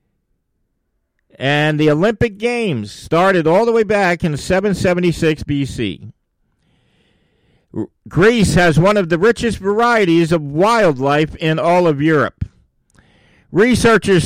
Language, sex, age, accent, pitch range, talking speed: English, male, 50-69, American, 150-215 Hz, 110 wpm